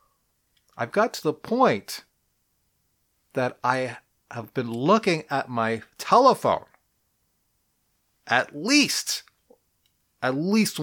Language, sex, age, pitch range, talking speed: English, male, 30-49, 120-185 Hz, 95 wpm